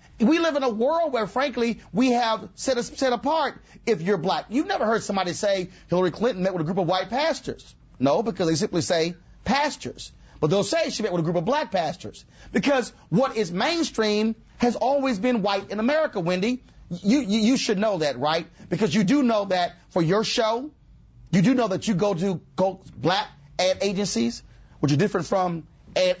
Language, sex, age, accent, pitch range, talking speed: English, male, 40-59, American, 180-245 Hz, 200 wpm